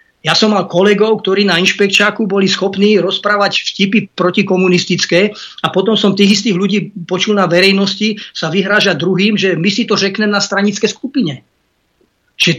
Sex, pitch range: male, 170-210 Hz